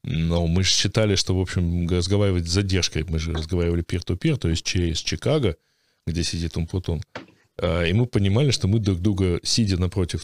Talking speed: 180 wpm